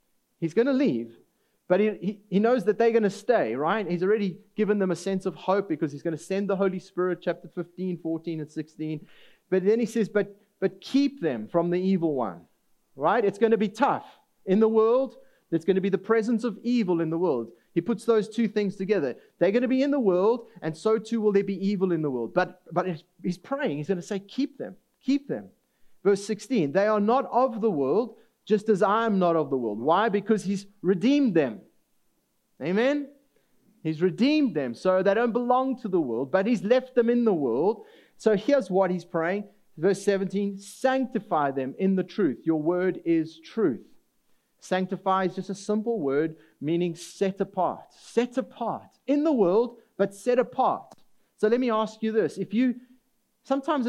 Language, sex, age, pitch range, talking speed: English, male, 30-49, 180-235 Hz, 205 wpm